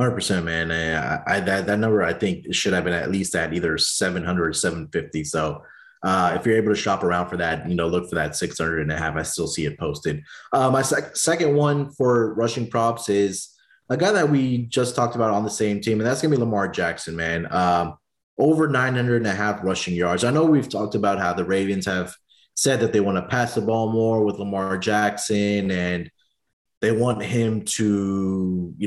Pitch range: 95-115 Hz